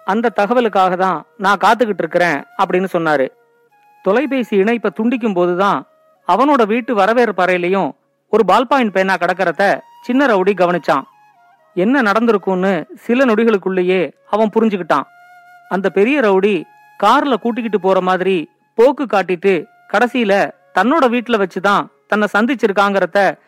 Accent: native